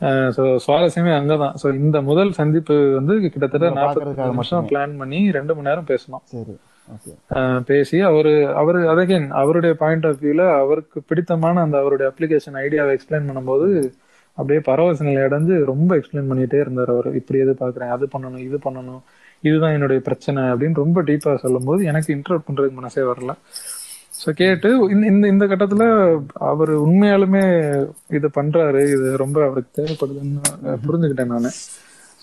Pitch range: 130-165 Hz